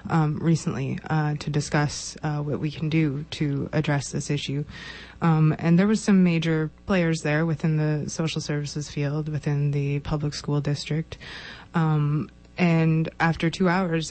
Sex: female